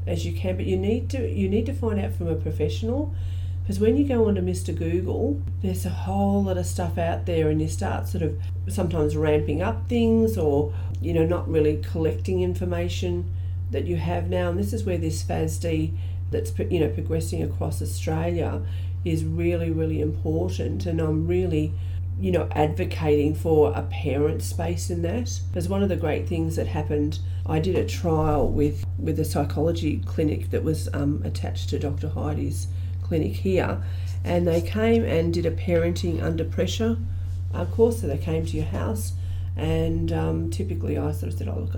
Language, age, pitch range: English, 40-59, 85-90 Hz